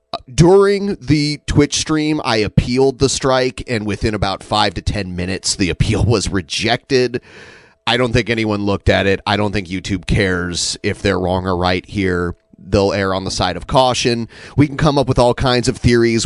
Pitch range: 95-125 Hz